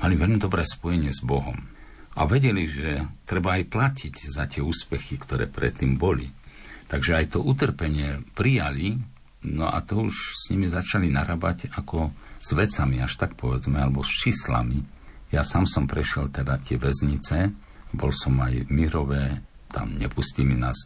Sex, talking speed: male, 160 wpm